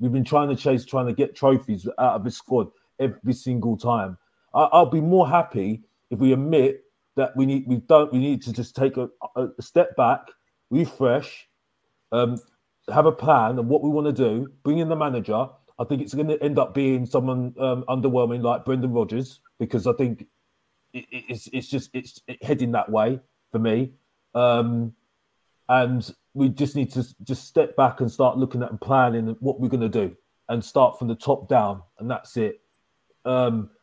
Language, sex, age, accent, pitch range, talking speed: English, male, 30-49, British, 115-135 Hz, 190 wpm